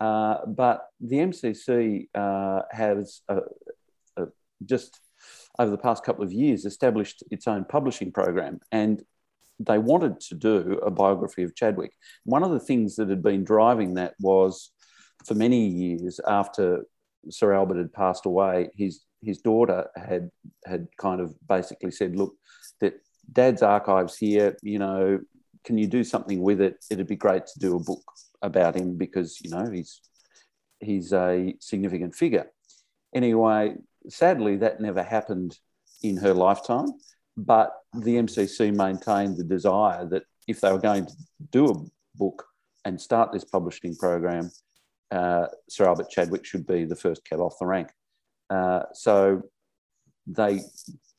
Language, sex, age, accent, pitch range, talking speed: English, male, 40-59, Australian, 95-110 Hz, 155 wpm